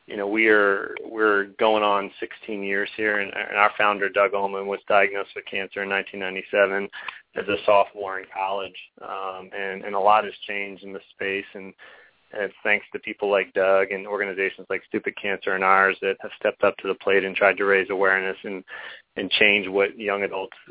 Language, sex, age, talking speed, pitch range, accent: English, male, 30-49, 195 wpm, 95-110 Hz, American